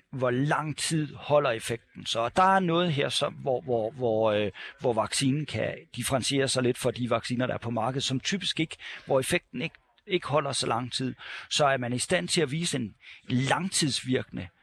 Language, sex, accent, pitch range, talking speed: Danish, male, native, 115-145 Hz, 185 wpm